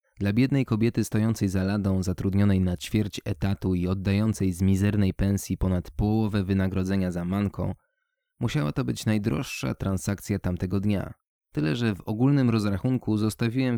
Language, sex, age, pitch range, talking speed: Polish, male, 20-39, 95-110 Hz, 145 wpm